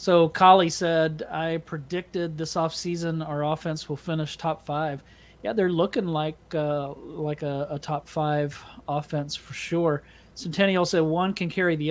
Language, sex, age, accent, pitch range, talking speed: English, male, 40-59, American, 150-180 Hz, 160 wpm